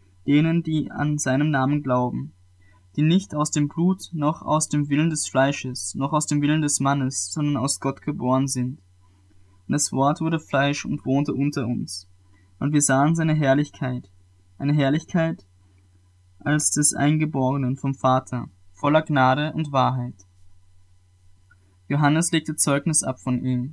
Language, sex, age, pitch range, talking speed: German, male, 20-39, 100-150 Hz, 150 wpm